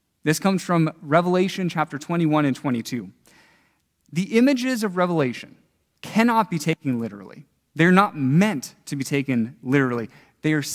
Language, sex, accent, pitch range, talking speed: English, male, American, 140-190 Hz, 140 wpm